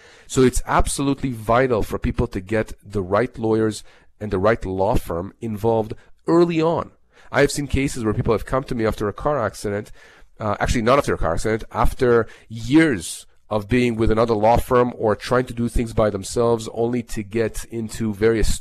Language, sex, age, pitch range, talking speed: English, male, 40-59, 110-130 Hz, 195 wpm